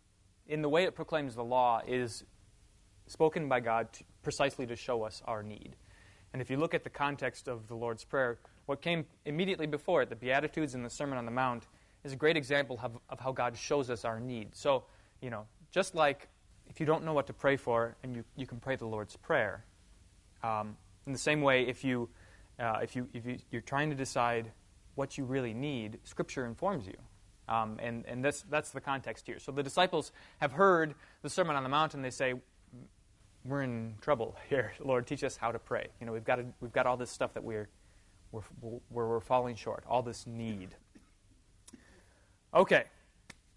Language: English